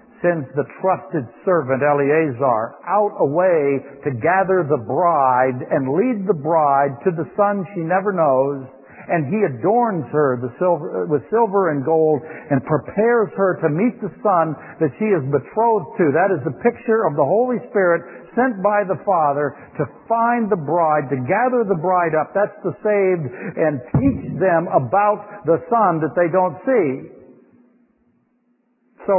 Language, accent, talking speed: English, American, 155 wpm